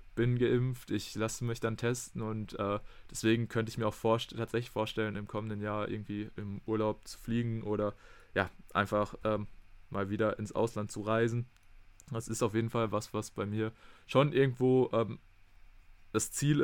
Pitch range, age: 100-115 Hz, 20-39